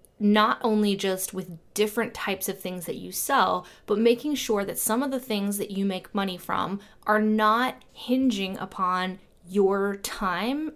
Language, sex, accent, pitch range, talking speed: English, female, American, 185-220 Hz, 165 wpm